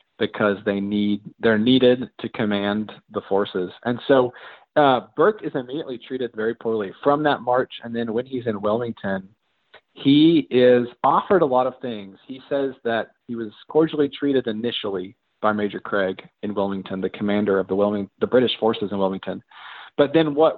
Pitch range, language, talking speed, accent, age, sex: 105-130 Hz, English, 175 wpm, American, 40-59, male